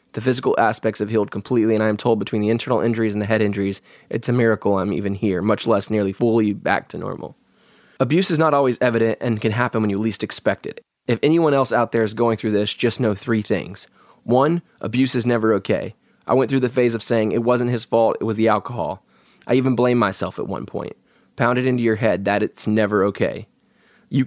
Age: 20-39